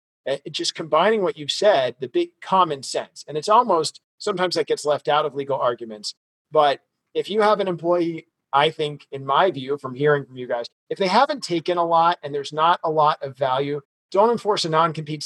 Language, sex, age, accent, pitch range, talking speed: English, male, 40-59, American, 135-170 Hz, 210 wpm